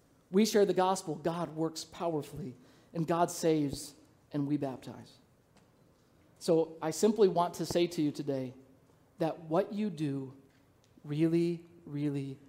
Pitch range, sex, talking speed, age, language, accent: 140-175 Hz, male, 135 wpm, 50-69, English, American